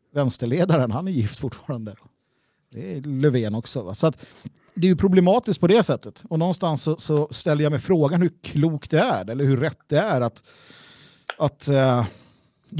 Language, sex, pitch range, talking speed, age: Swedish, male, 120-155 Hz, 180 wpm, 50-69